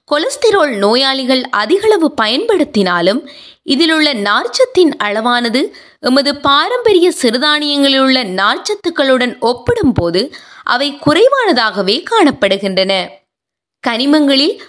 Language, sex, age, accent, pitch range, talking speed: Tamil, female, 20-39, native, 235-345 Hz, 60 wpm